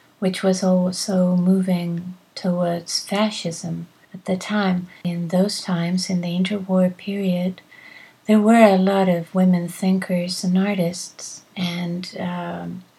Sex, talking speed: female, 125 wpm